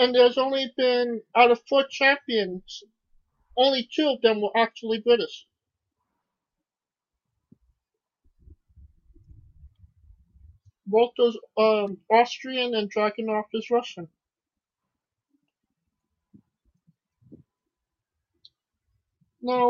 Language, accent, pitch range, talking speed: English, American, 195-245 Hz, 75 wpm